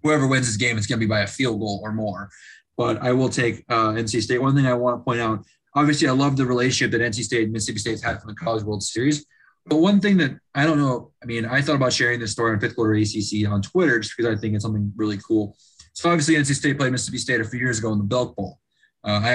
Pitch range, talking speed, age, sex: 110-135 Hz, 280 wpm, 20-39, male